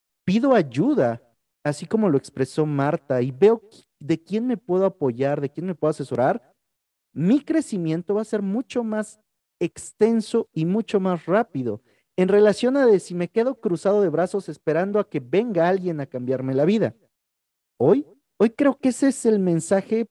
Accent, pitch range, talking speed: Mexican, 140-215 Hz, 175 wpm